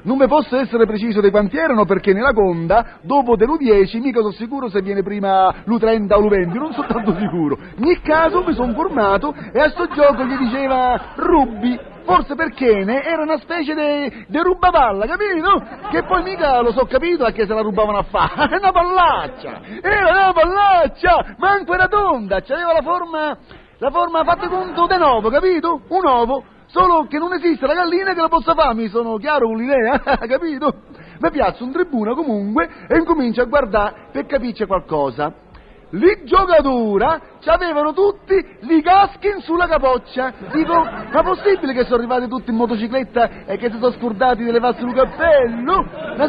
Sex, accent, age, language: male, native, 40-59, Italian